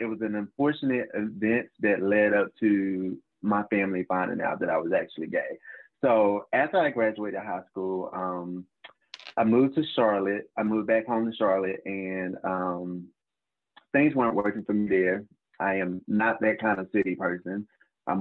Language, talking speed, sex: English, 170 wpm, male